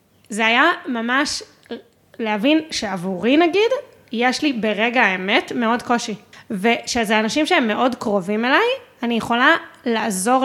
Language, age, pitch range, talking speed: Hebrew, 20-39, 225-285 Hz, 120 wpm